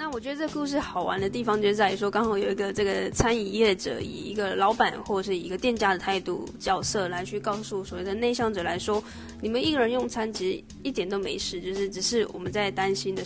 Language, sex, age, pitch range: Chinese, female, 20-39, 190-230 Hz